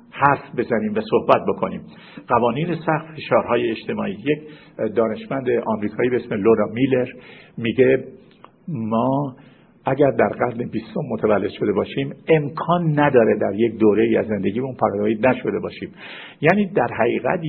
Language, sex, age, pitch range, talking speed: Persian, male, 50-69, 115-165 Hz, 135 wpm